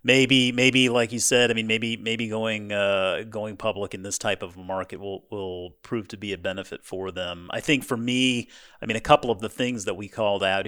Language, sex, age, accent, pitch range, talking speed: English, male, 30-49, American, 100-125 Hz, 235 wpm